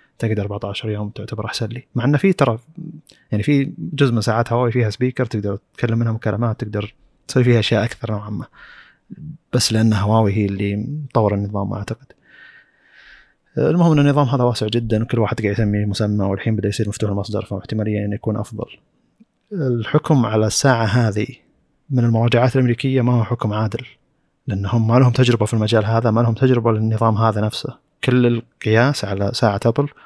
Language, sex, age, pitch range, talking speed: Arabic, male, 30-49, 110-130 Hz, 175 wpm